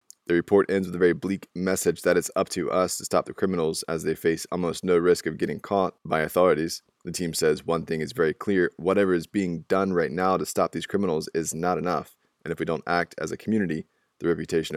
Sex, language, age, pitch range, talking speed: male, English, 20-39, 85-95 Hz, 240 wpm